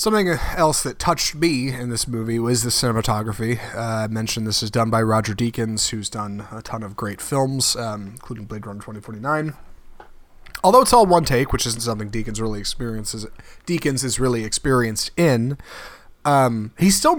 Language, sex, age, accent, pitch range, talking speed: English, male, 30-49, American, 110-150 Hz, 170 wpm